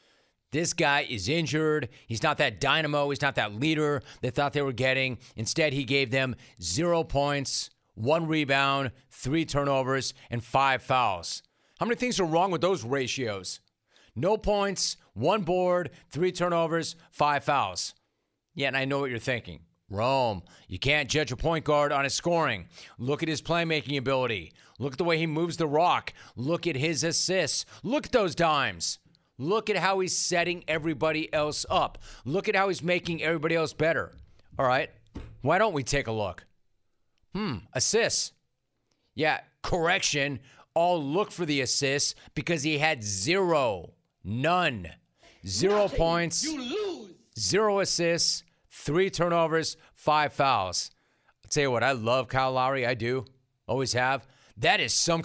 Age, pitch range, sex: 40-59, 130-170 Hz, male